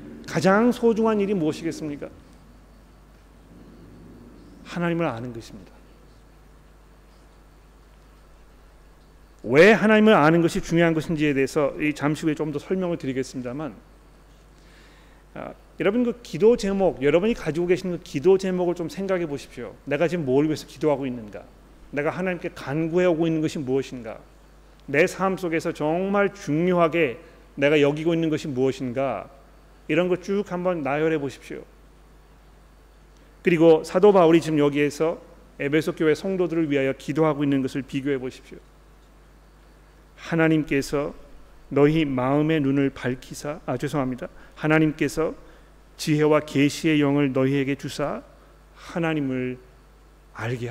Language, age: Korean, 40-59